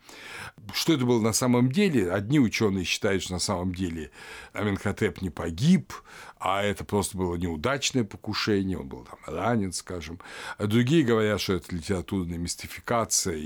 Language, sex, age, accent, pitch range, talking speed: Russian, male, 60-79, native, 90-120 Hz, 150 wpm